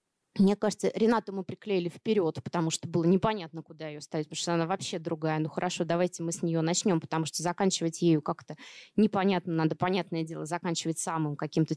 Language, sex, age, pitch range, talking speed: Russian, female, 20-39, 160-200 Hz, 190 wpm